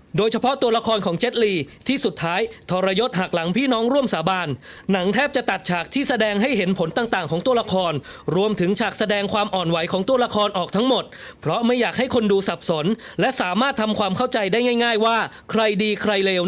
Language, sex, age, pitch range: English, male, 20-39, 185-235 Hz